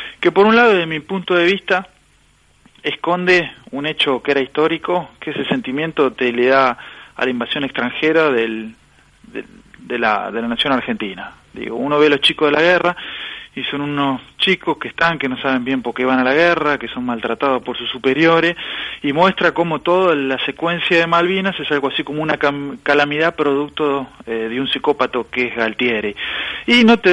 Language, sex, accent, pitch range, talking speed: Spanish, male, Argentinian, 125-170 Hz, 200 wpm